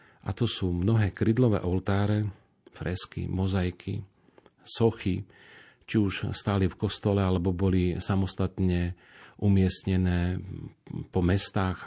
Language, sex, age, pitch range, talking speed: Slovak, male, 40-59, 90-105 Hz, 100 wpm